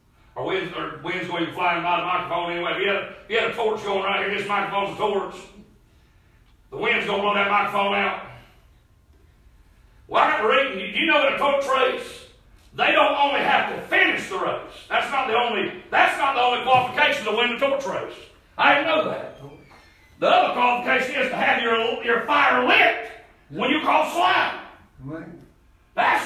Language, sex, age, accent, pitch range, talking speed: English, male, 40-59, American, 210-310 Hz, 190 wpm